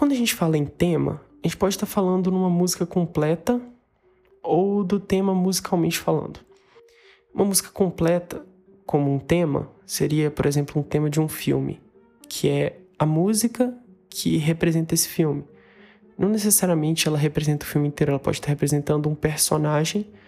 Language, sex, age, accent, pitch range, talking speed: Portuguese, male, 20-39, Brazilian, 150-185 Hz, 160 wpm